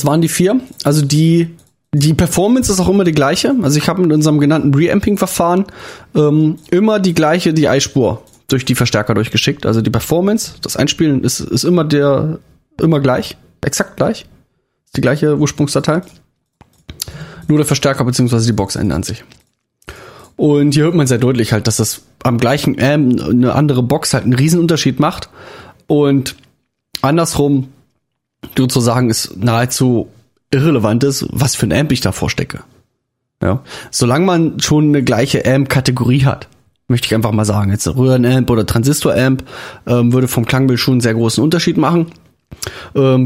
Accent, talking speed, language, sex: German, 165 wpm, German, male